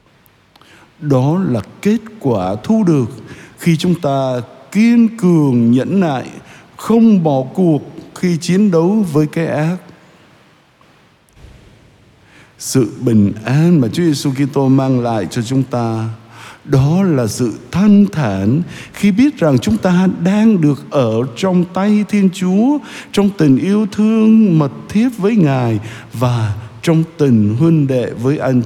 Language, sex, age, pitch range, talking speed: Vietnamese, male, 60-79, 120-180 Hz, 140 wpm